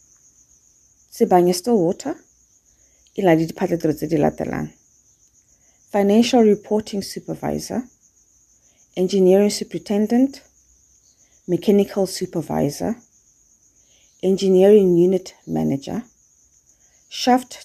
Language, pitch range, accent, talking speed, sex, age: Italian, 175-230 Hz, South African, 60 wpm, female, 40-59